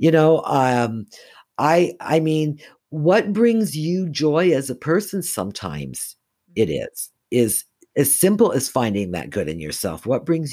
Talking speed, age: 155 wpm, 60-79